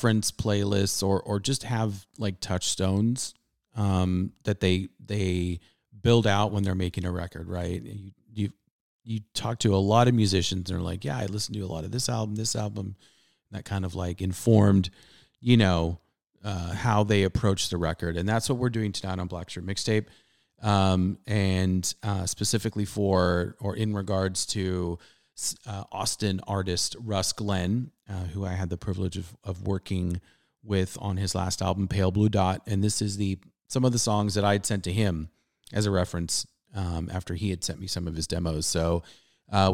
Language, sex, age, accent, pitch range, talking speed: English, male, 30-49, American, 95-110 Hz, 190 wpm